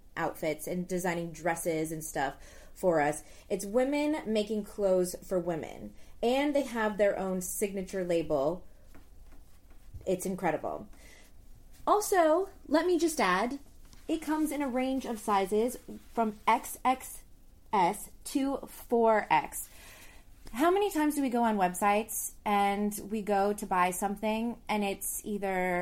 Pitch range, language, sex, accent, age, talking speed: 175-230 Hz, English, female, American, 20-39, 130 wpm